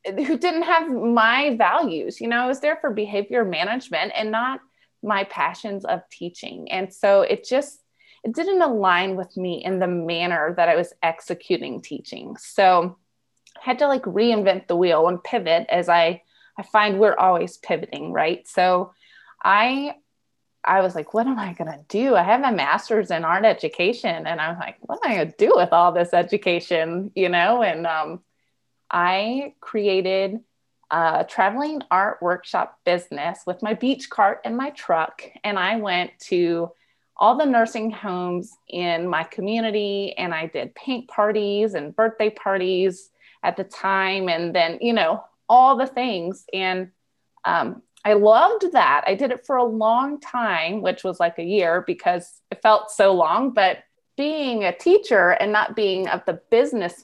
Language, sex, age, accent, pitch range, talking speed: English, female, 20-39, American, 180-250 Hz, 175 wpm